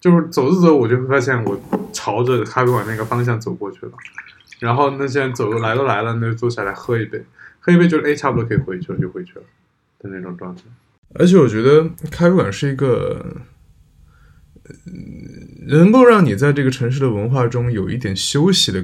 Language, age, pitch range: Chinese, 20-39, 105-145 Hz